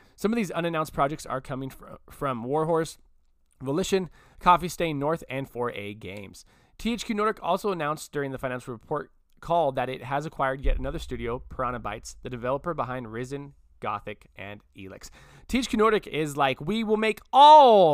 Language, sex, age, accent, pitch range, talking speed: English, male, 20-39, American, 125-175 Hz, 165 wpm